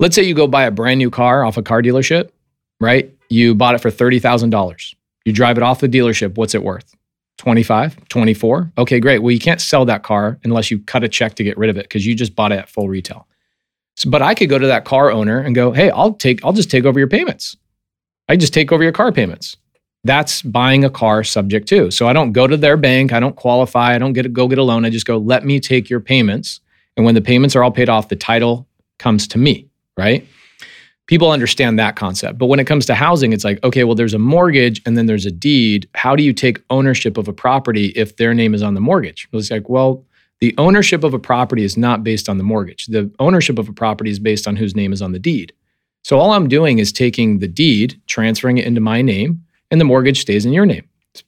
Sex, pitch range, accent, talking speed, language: male, 110-135 Hz, American, 250 wpm, English